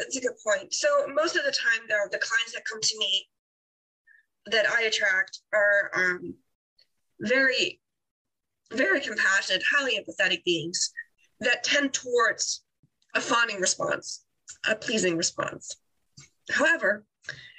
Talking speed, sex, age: 125 wpm, female, 30-49